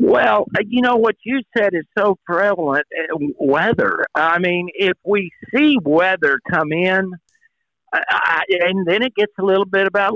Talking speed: 155 wpm